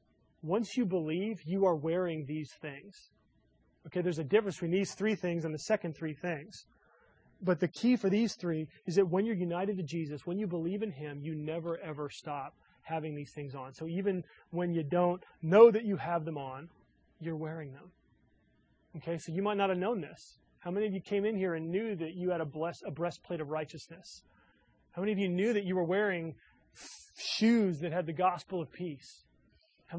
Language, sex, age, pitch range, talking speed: English, male, 30-49, 160-195 Hz, 205 wpm